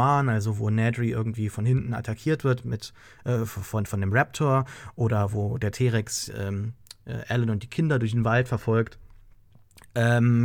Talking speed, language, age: 150 wpm, English, 30-49